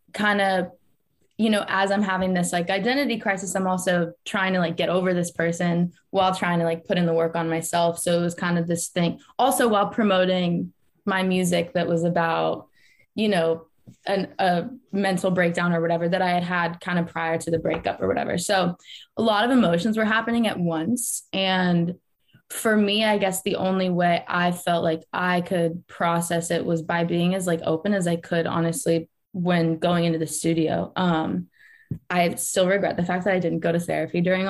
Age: 20-39